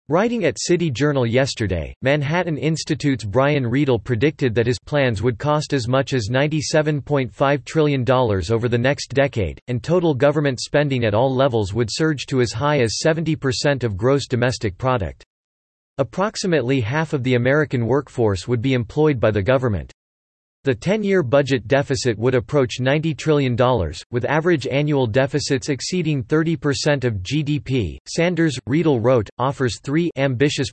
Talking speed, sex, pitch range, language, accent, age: 150 wpm, male, 120-150 Hz, English, American, 40-59